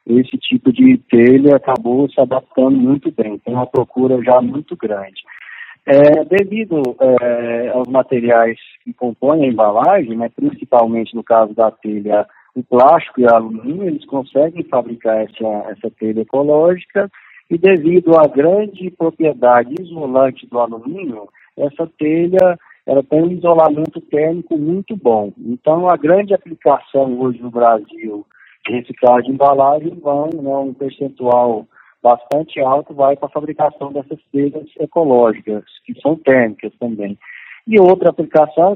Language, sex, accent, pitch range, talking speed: Portuguese, male, Brazilian, 120-165 Hz, 135 wpm